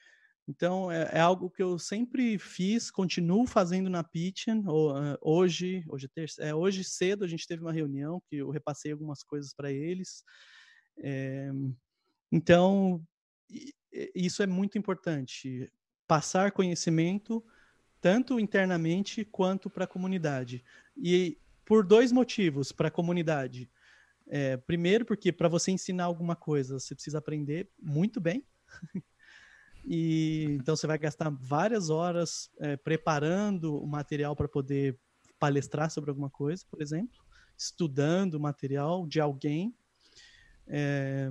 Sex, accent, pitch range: male, Brazilian, 145-190 Hz